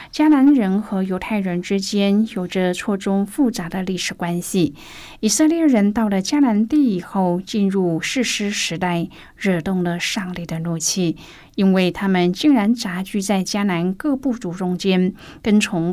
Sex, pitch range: female, 180-215 Hz